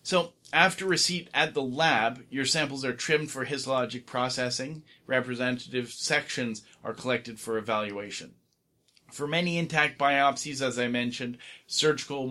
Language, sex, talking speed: English, male, 130 wpm